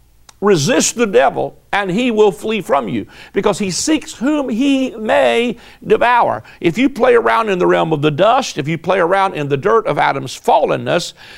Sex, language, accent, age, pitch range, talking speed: male, English, American, 50-69, 185-255 Hz, 190 wpm